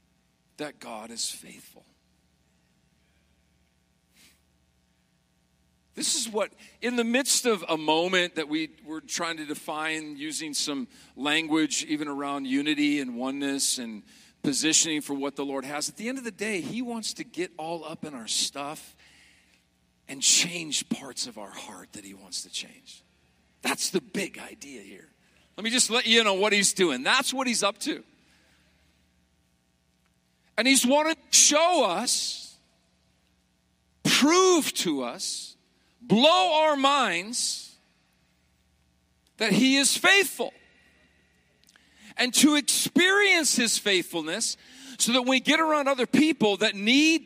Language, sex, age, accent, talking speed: English, male, 40-59, American, 140 wpm